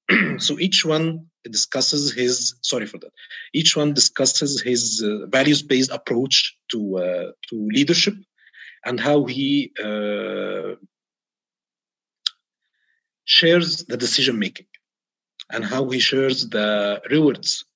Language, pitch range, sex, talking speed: English, 120-155 Hz, male, 115 wpm